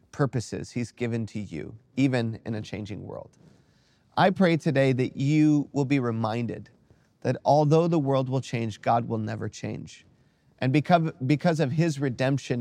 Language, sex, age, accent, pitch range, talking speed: English, male, 30-49, American, 120-150 Hz, 155 wpm